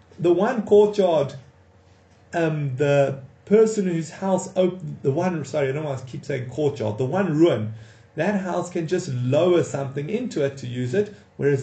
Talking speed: 170 wpm